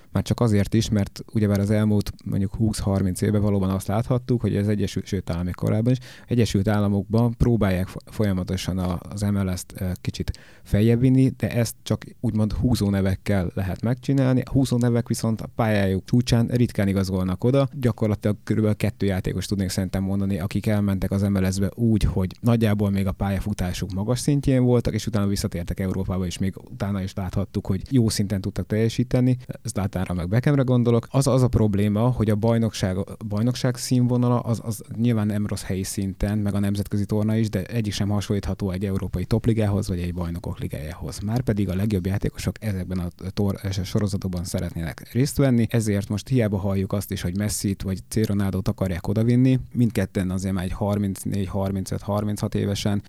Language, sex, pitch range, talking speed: Hungarian, male, 95-115 Hz, 165 wpm